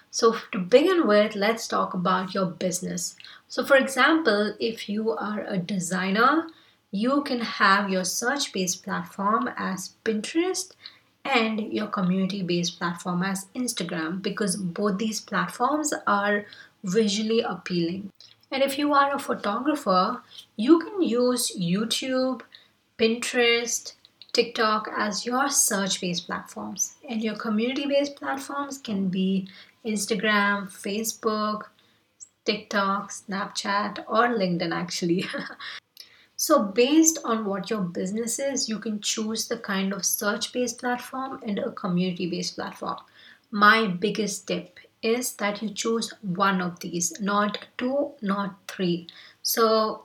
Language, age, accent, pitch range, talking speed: English, 30-49, Indian, 190-240 Hz, 120 wpm